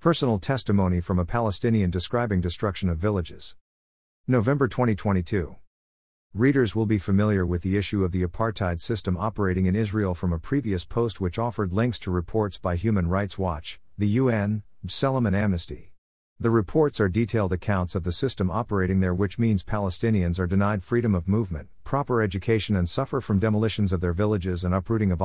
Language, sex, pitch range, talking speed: English, male, 90-115 Hz, 175 wpm